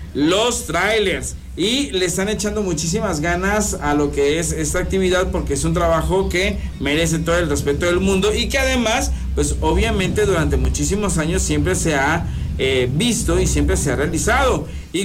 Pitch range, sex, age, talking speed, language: 150-205 Hz, male, 40-59, 175 wpm, Spanish